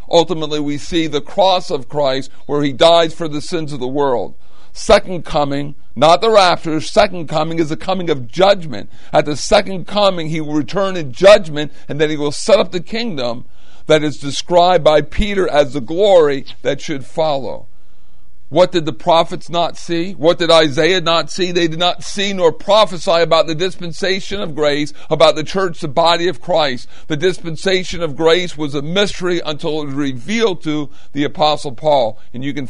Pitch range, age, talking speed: 145-180 Hz, 50-69, 190 wpm